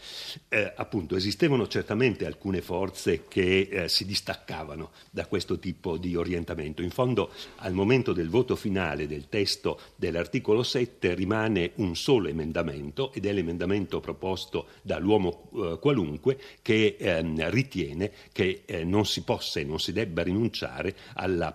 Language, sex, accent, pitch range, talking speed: Italian, male, native, 85-110 Hz, 140 wpm